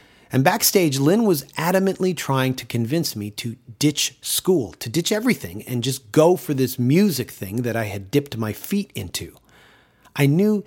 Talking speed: 175 wpm